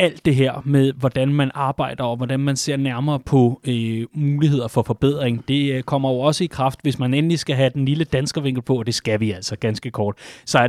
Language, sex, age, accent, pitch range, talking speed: Danish, male, 30-49, native, 130-160 Hz, 235 wpm